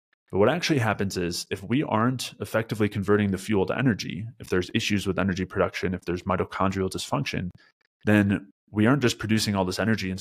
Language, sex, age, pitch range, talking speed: English, male, 30-49, 95-110 Hz, 195 wpm